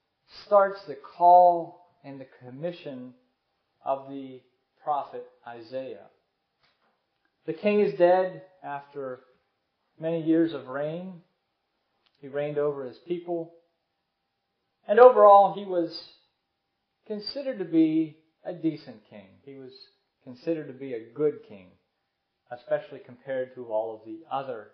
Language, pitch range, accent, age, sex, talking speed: English, 130-175 Hz, American, 40-59, male, 120 wpm